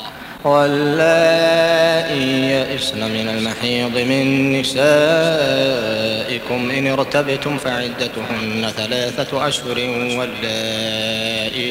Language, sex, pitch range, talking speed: Arabic, male, 120-150 Hz, 60 wpm